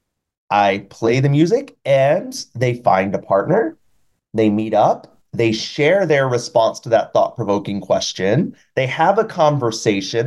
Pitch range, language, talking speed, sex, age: 115-165 Hz, English, 140 wpm, male, 30-49